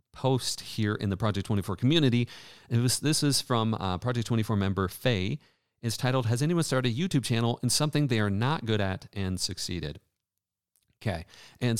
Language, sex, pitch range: English, male, 100-130 Hz